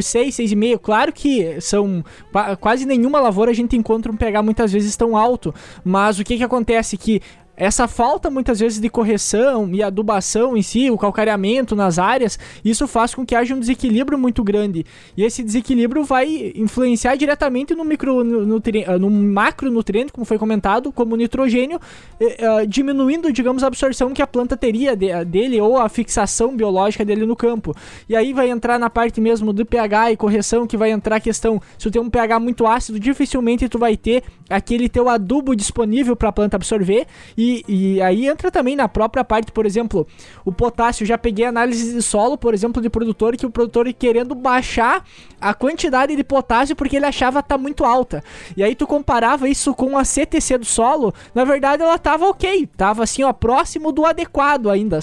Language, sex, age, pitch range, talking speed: Portuguese, male, 20-39, 215-260 Hz, 185 wpm